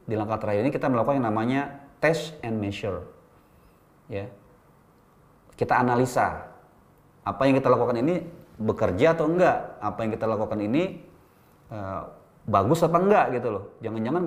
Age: 30-49